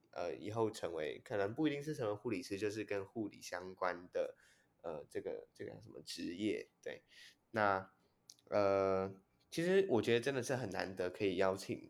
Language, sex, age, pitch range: Chinese, male, 10-29, 95-130 Hz